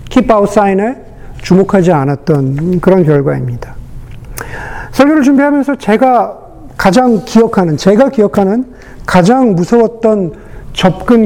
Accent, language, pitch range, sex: native, Korean, 145-200 Hz, male